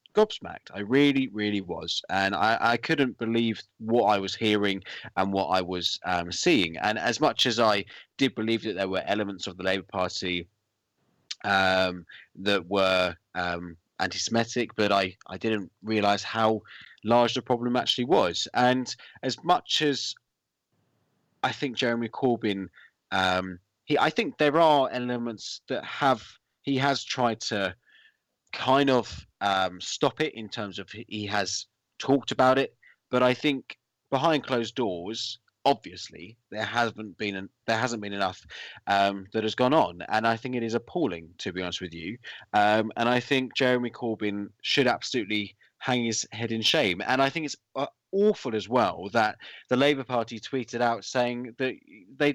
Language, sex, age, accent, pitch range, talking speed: English, male, 20-39, British, 100-130 Hz, 165 wpm